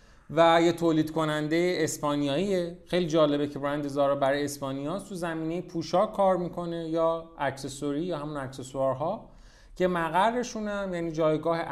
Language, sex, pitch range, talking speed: Persian, male, 150-190 Hz, 140 wpm